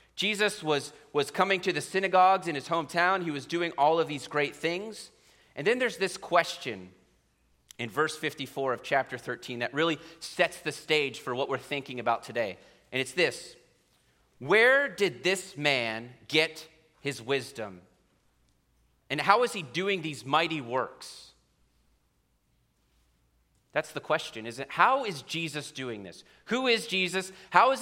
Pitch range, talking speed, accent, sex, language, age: 130-185 Hz, 155 wpm, American, male, English, 30-49